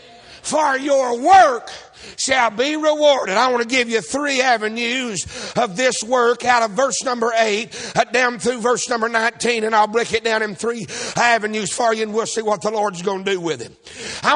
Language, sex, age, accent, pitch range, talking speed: English, male, 60-79, American, 240-330 Hz, 200 wpm